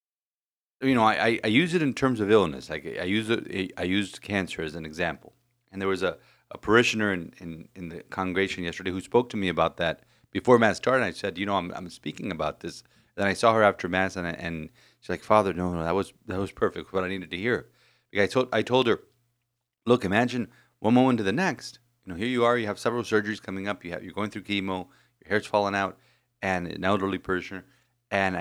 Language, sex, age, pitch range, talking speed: English, male, 30-49, 100-125 Hz, 240 wpm